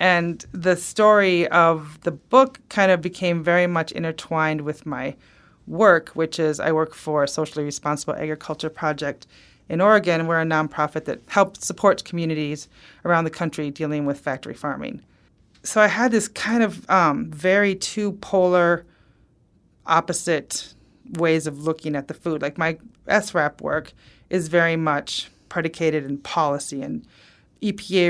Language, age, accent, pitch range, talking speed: English, 30-49, American, 155-180 Hz, 145 wpm